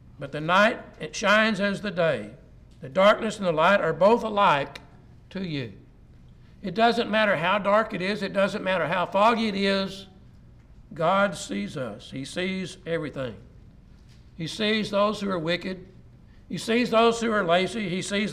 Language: English